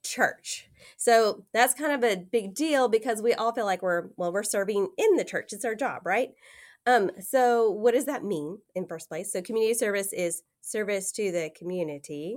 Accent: American